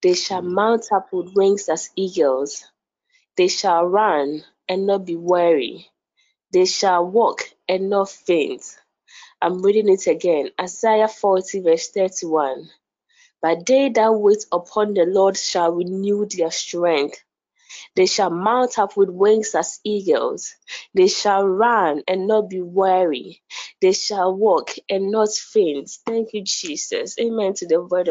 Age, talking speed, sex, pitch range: 20-39, 145 wpm, female, 195-290 Hz